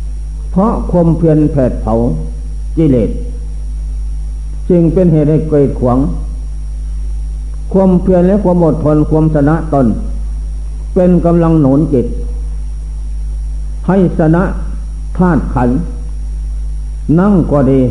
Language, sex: Thai, male